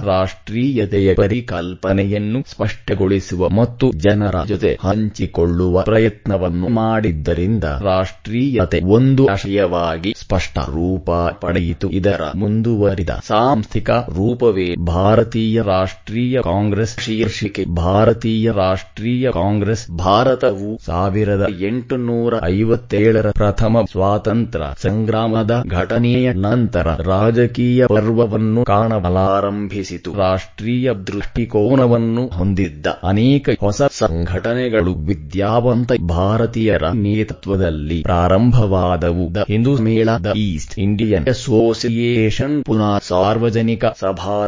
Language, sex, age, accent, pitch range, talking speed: English, male, 20-39, Indian, 95-115 Hz, 85 wpm